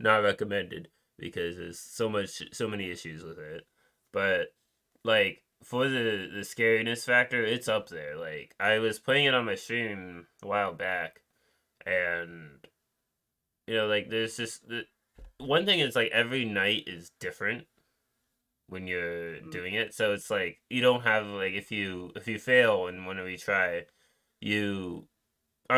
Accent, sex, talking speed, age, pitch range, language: American, male, 160 wpm, 20-39, 90-115 Hz, English